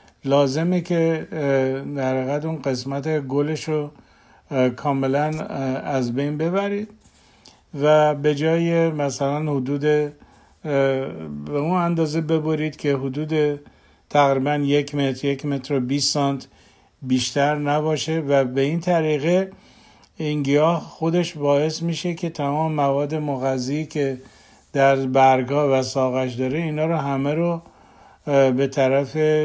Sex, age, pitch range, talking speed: male, 50-69, 135-155 Hz, 115 wpm